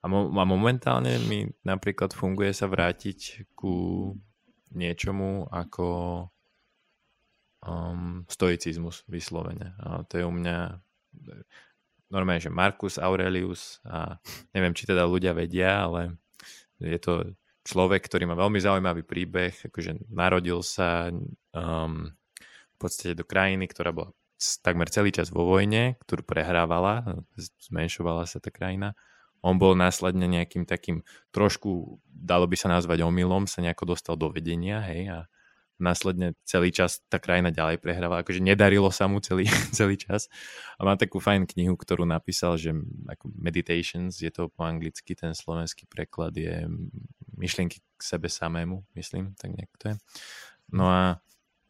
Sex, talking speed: male, 140 wpm